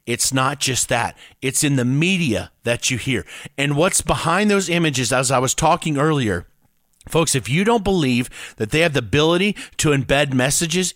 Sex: male